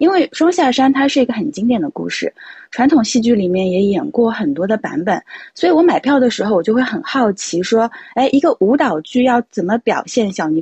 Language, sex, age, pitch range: Chinese, female, 20-39, 180-260 Hz